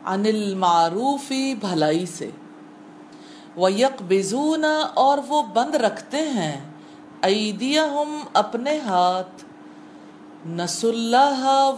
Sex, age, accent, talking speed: female, 40-59, Indian, 90 wpm